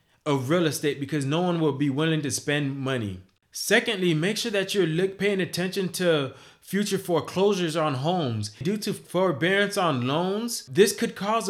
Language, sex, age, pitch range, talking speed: English, male, 20-39, 140-185 Hz, 170 wpm